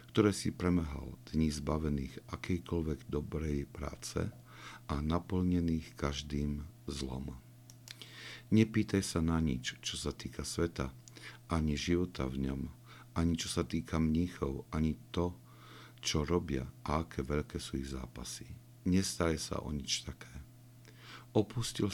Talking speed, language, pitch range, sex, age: 125 wpm, Slovak, 70-95 Hz, male, 50-69